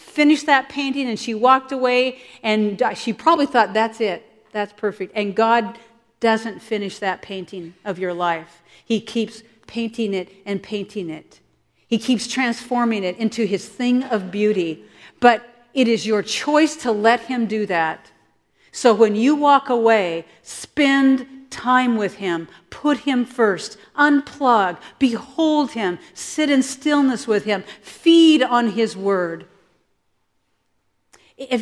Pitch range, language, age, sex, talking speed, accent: 180-260 Hz, English, 50-69, female, 140 wpm, American